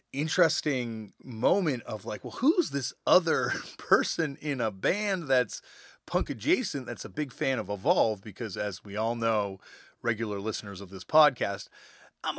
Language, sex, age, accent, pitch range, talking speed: English, male, 30-49, American, 105-150 Hz, 155 wpm